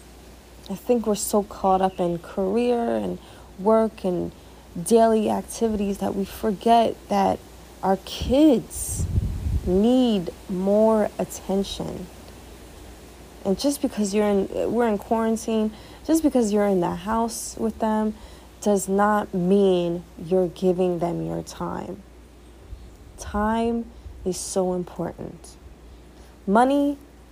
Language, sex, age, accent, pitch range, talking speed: English, female, 30-49, American, 170-225 Hz, 110 wpm